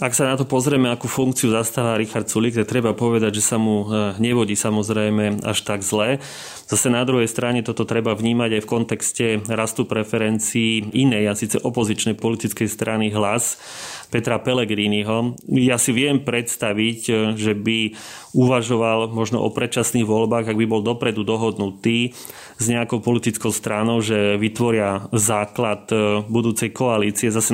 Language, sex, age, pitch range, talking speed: Slovak, male, 30-49, 110-125 Hz, 150 wpm